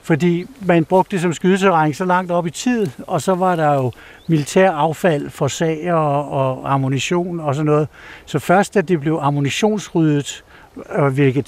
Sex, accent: male, native